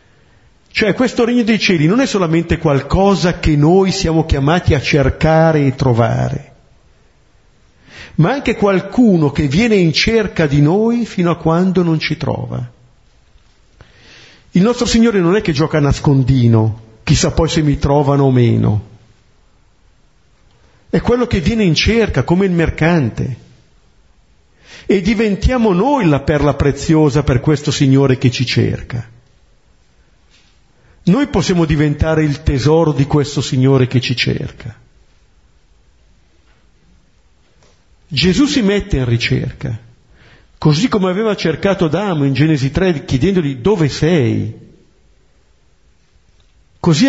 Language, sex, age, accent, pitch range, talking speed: Italian, male, 50-69, native, 115-175 Hz, 125 wpm